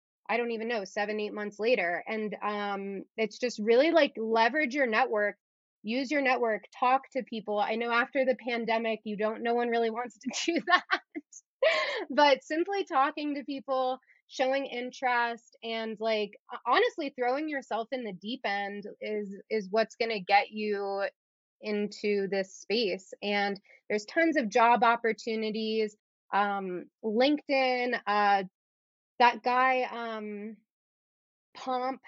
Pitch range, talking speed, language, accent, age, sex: 210-265 Hz, 140 wpm, English, American, 20-39, female